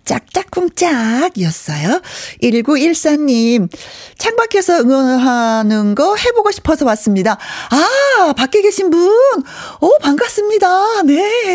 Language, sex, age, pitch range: Korean, female, 40-59, 190-310 Hz